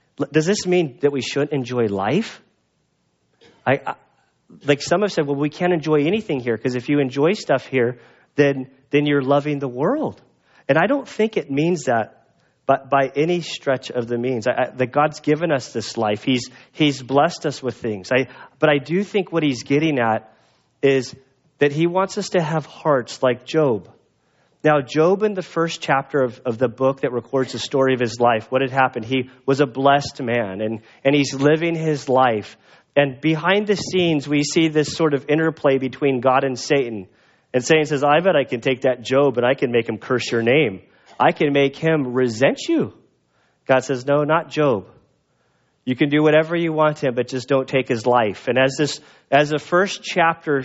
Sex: male